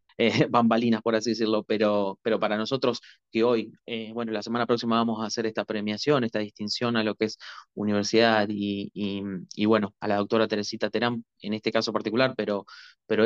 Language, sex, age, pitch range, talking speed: Spanish, male, 20-39, 105-125 Hz, 195 wpm